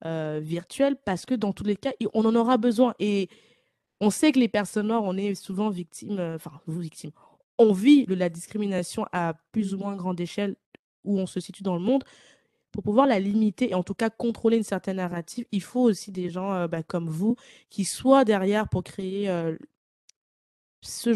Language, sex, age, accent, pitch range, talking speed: French, female, 20-39, French, 190-240 Hz, 205 wpm